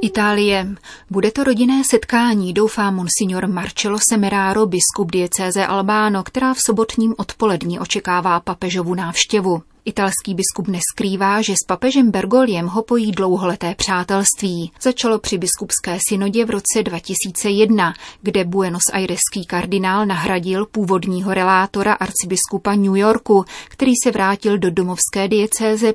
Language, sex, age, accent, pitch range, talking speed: Czech, female, 30-49, native, 185-215 Hz, 125 wpm